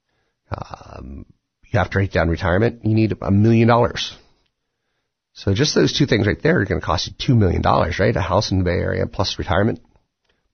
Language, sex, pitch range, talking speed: English, male, 85-115 Hz, 210 wpm